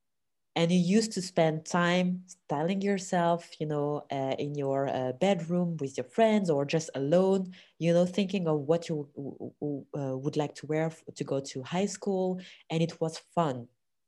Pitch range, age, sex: 140-180 Hz, 20-39, female